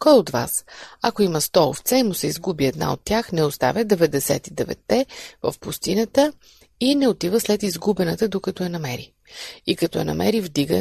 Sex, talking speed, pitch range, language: female, 180 wpm, 175-235 Hz, Bulgarian